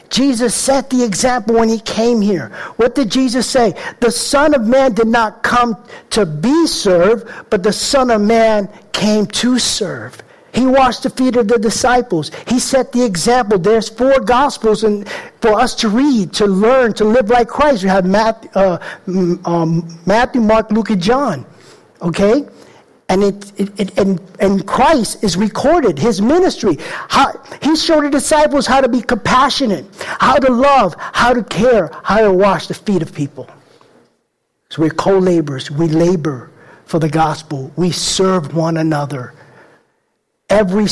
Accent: American